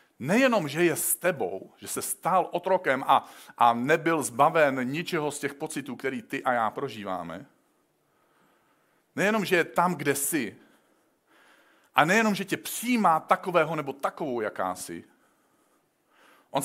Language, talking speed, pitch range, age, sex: Czech, 135 wpm, 135-180 Hz, 50-69, male